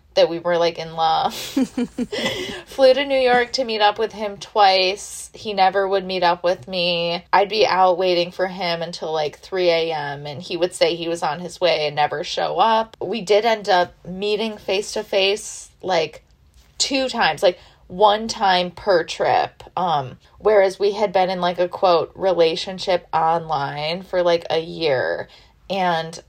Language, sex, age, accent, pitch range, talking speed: English, female, 20-39, American, 175-215 Hz, 175 wpm